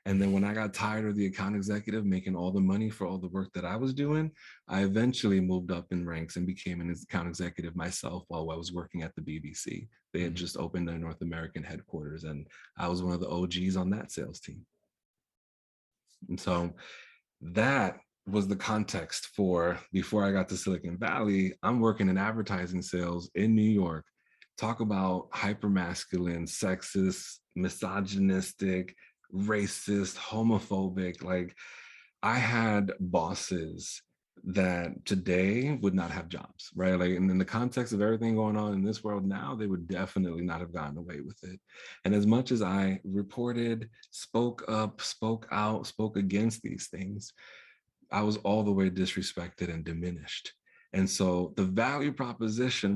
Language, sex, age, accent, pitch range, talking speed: English, male, 30-49, American, 90-105 Hz, 165 wpm